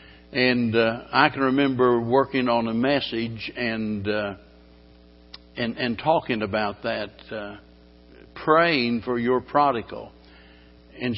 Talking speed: 120 wpm